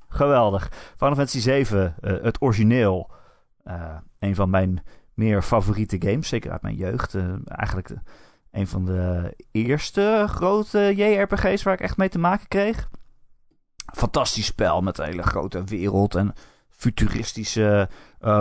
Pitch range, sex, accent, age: 100-145 Hz, male, Dutch, 30-49